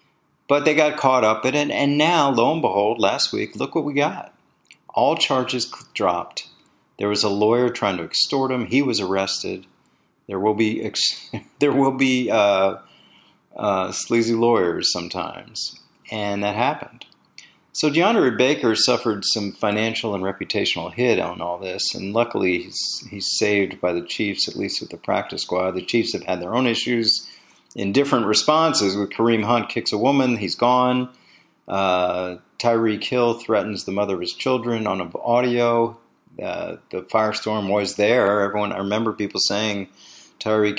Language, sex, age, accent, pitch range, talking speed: English, male, 40-59, American, 95-120 Hz, 165 wpm